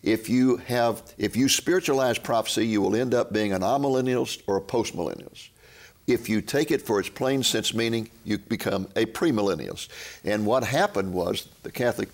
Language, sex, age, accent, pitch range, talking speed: English, male, 60-79, American, 105-135 Hz, 180 wpm